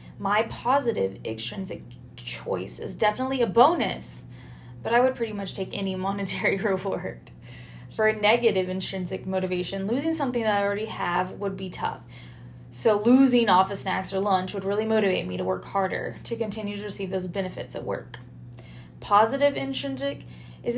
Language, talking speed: English, 160 wpm